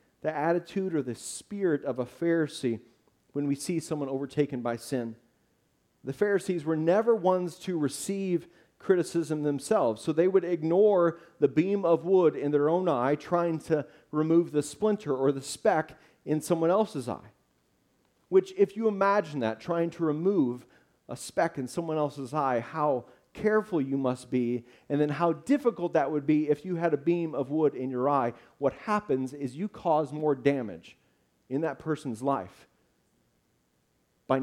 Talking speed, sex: 165 wpm, male